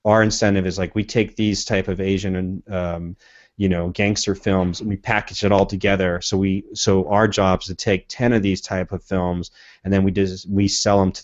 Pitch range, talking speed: 95-115 Hz, 230 wpm